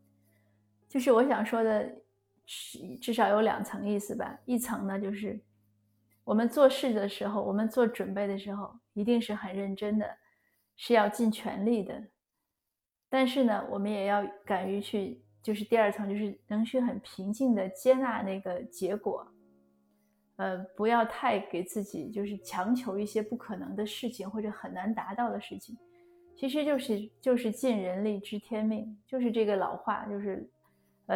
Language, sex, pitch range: Chinese, female, 195-235 Hz